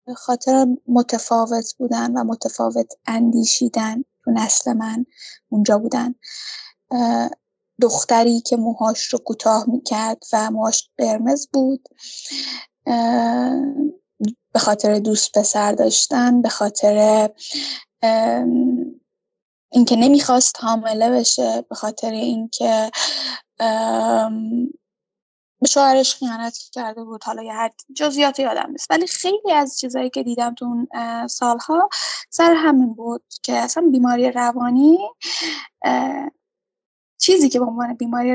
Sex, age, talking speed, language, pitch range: female, 10-29, 100 wpm, Persian, 230-295 Hz